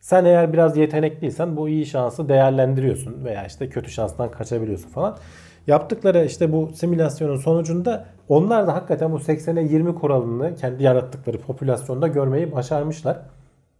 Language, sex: Turkish, male